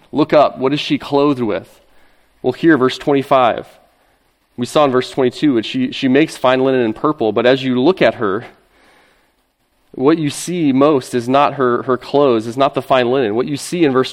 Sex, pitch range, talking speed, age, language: male, 125-150 Hz, 205 wpm, 30-49, English